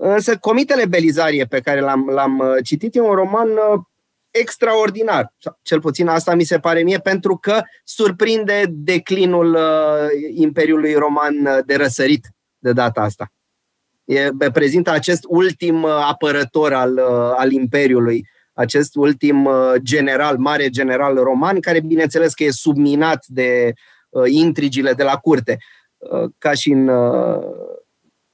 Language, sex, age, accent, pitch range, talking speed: Romanian, male, 30-49, native, 135-190 Hz, 140 wpm